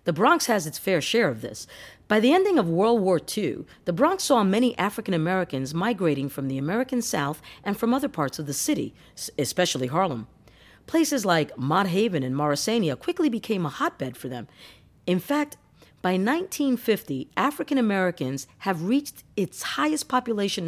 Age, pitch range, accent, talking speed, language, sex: 40-59, 145-235 Hz, American, 165 wpm, English, female